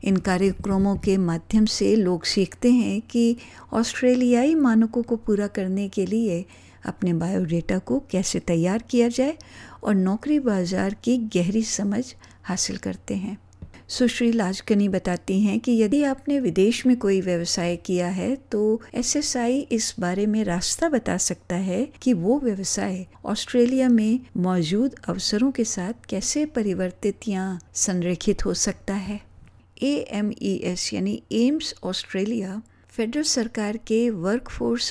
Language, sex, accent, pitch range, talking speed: Hindi, female, native, 185-235 Hz, 130 wpm